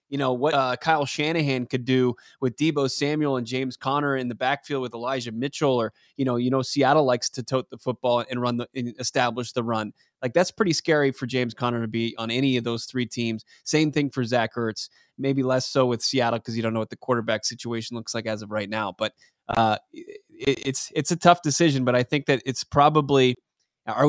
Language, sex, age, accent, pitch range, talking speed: English, male, 20-39, American, 120-140 Hz, 230 wpm